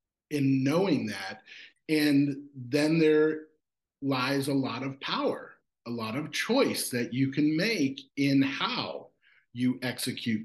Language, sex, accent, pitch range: English, male, American, 120-145 Hz